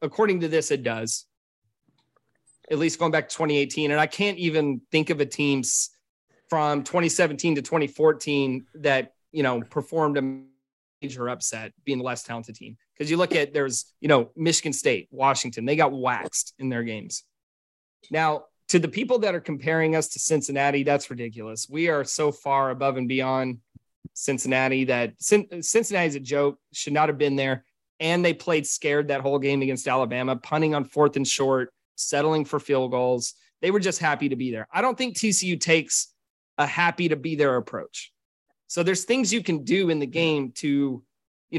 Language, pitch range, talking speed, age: English, 135-165 Hz, 185 wpm, 30-49